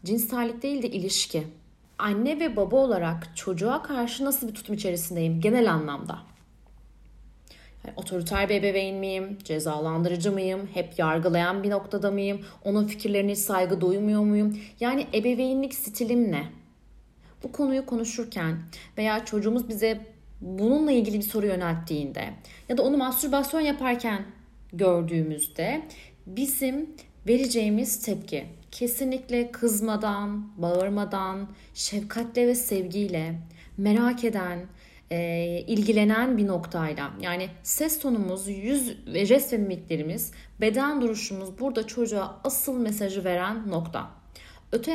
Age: 30-49